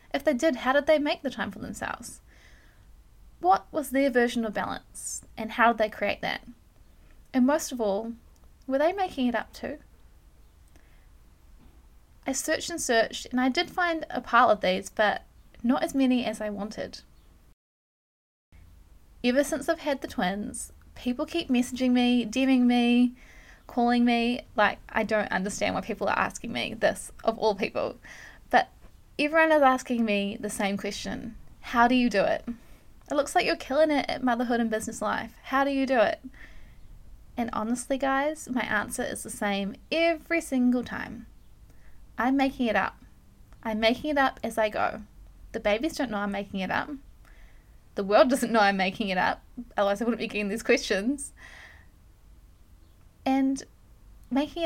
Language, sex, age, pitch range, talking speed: English, female, 10-29, 210-275 Hz, 170 wpm